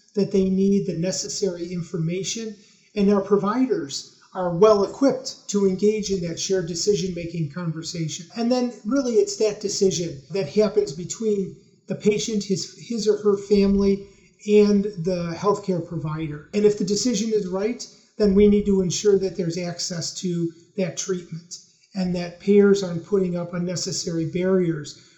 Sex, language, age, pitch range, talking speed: male, English, 40-59, 175-210 Hz, 155 wpm